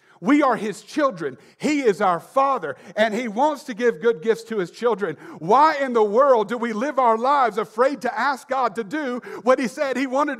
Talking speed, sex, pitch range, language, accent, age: 220 wpm, male, 175-235 Hz, English, American, 50-69